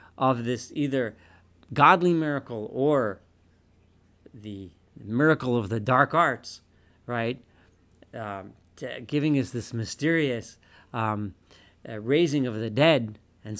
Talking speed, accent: 110 wpm, American